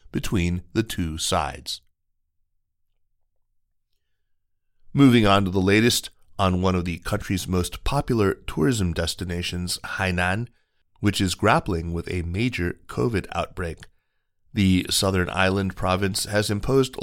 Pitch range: 90-105 Hz